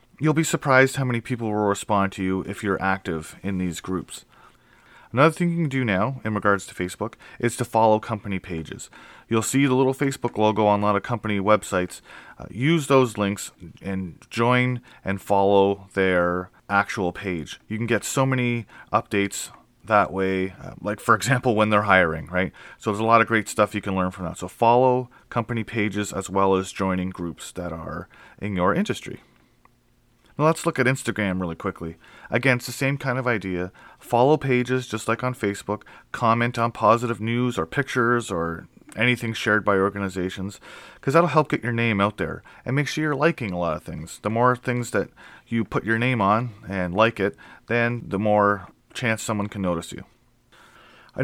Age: 30-49